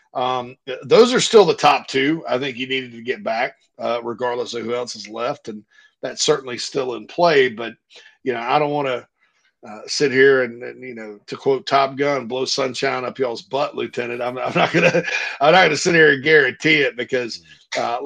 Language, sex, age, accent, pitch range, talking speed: English, male, 40-59, American, 125-165 Hz, 220 wpm